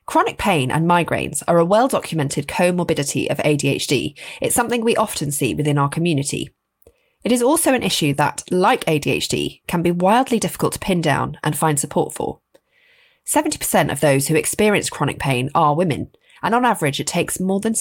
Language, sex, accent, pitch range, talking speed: English, female, British, 145-225 Hz, 180 wpm